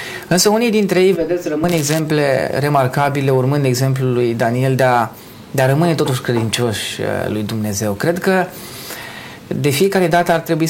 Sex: male